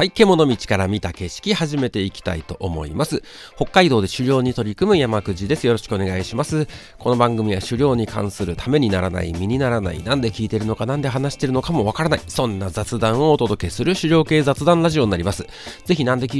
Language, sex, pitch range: Japanese, male, 95-145 Hz